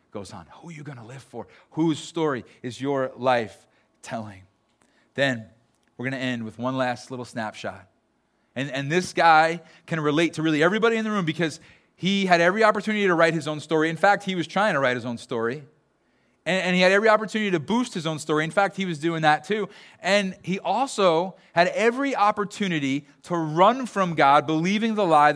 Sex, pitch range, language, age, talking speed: male, 130-175 Hz, English, 30-49, 210 wpm